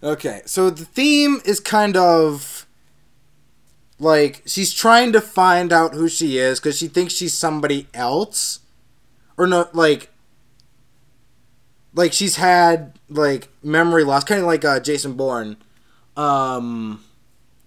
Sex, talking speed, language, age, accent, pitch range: male, 130 wpm, English, 20-39, American, 125-165 Hz